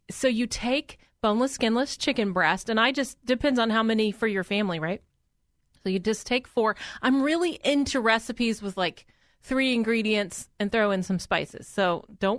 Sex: female